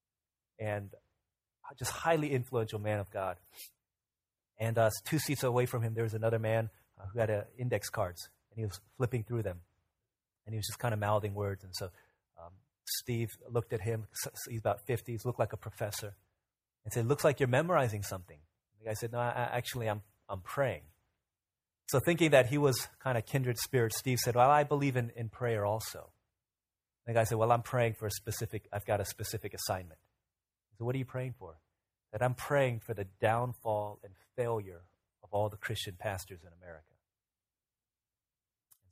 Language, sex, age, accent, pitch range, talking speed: English, male, 30-49, American, 100-125 Hz, 195 wpm